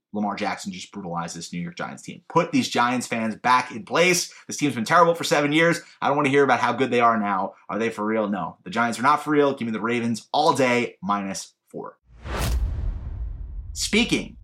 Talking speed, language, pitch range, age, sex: 225 wpm, English, 110-155 Hz, 30-49, male